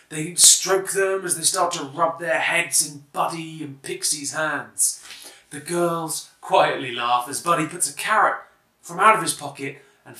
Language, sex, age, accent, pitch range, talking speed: English, male, 20-39, British, 140-185 Hz, 175 wpm